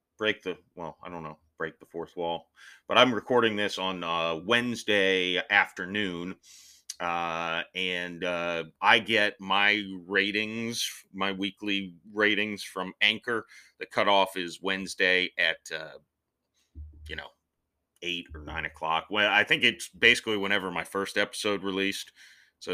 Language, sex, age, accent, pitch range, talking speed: English, male, 30-49, American, 85-105 Hz, 135 wpm